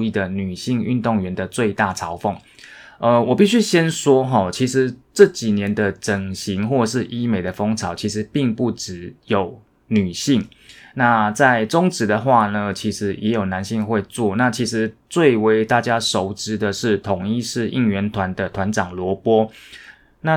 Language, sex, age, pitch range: Chinese, male, 20-39, 100-120 Hz